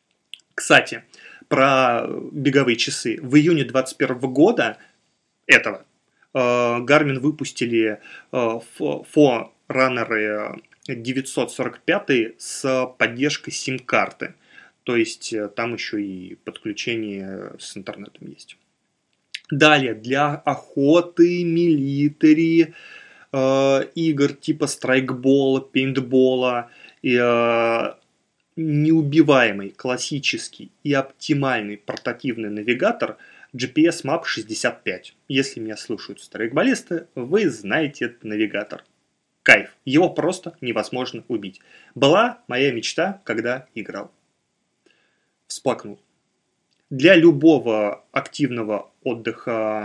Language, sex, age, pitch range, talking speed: Russian, male, 20-39, 115-150 Hz, 80 wpm